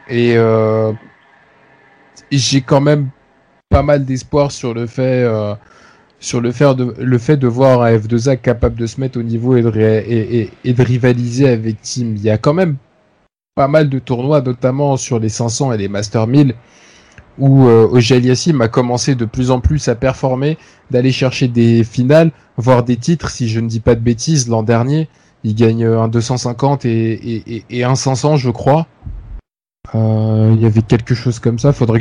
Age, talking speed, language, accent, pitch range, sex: 20-39, 190 wpm, French, French, 110-135 Hz, male